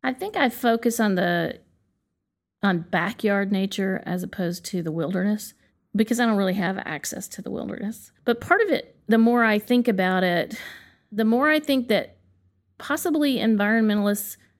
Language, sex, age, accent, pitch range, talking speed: English, female, 40-59, American, 190-245 Hz, 165 wpm